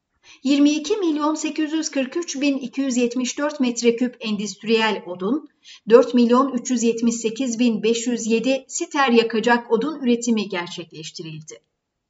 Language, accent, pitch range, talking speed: Turkish, native, 210-275 Hz, 50 wpm